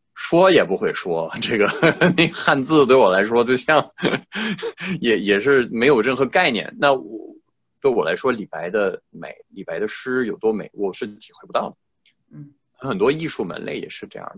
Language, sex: Chinese, male